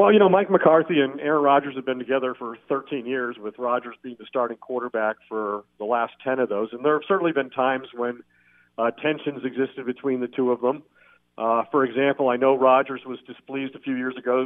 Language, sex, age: English, male, 50-69